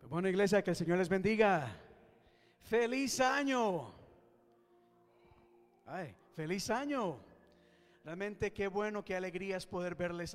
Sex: male